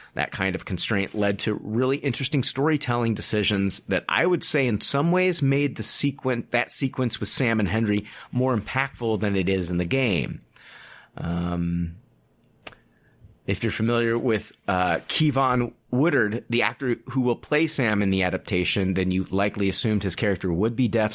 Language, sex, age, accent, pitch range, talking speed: English, male, 30-49, American, 105-135 Hz, 170 wpm